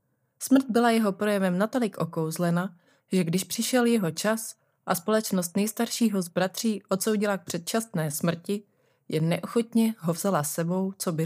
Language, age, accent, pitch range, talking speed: Czech, 30-49, native, 160-210 Hz, 145 wpm